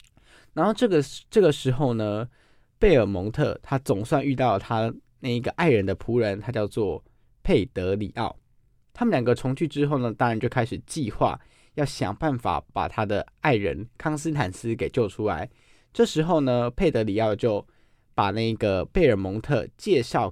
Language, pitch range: Chinese, 110-140 Hz